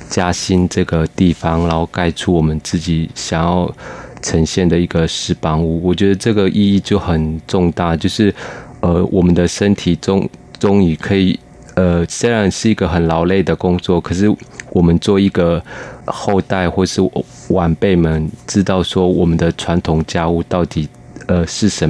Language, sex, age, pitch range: Chinese, male, 20-39, 85-95 Hz